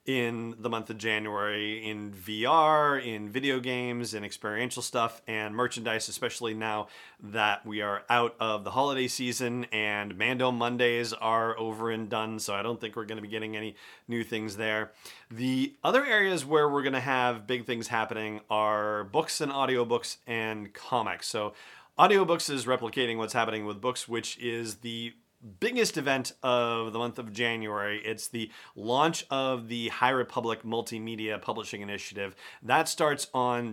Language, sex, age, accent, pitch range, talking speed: English, male, 40-59, American, 110-130 Hz, 165 wpm